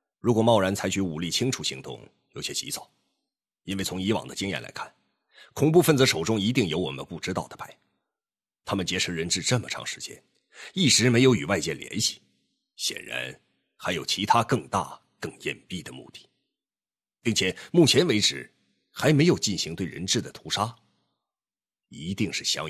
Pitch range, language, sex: 90-115 Hz, Chinese, male